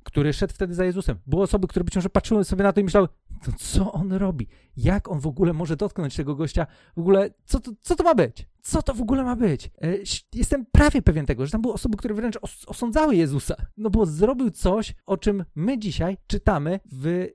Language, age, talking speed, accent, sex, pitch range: Polish, 40-59, 230 wpm, native, male, 130-195 Hz